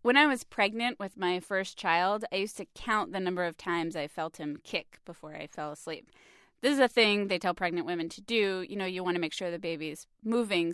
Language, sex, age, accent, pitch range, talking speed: English, female, 20-39, American, 170-220 Hz, 245 wpm